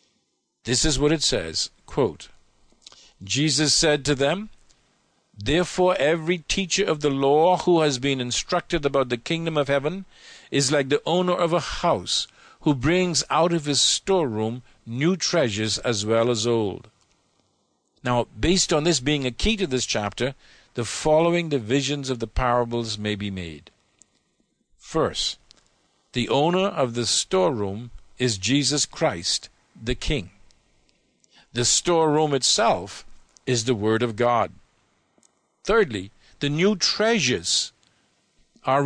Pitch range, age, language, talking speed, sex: 120-170 Hz, 50-69, English, 135 wpm, male